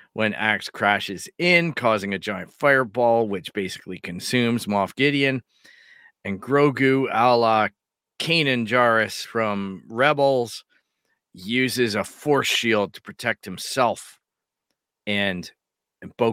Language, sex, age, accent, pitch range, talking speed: English, male, 40-59, American, 105-135 Hz, 110 wpm